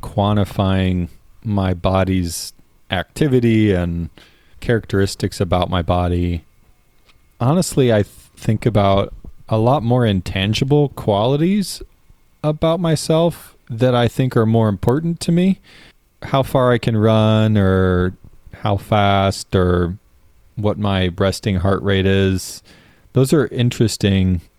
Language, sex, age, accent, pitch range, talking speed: English, male, 30-49, American, 95-115 Hz, 110 wpm